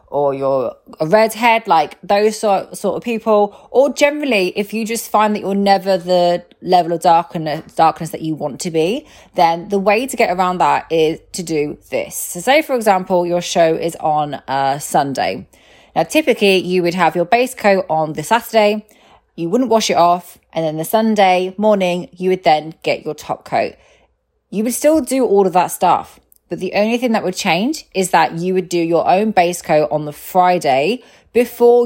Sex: female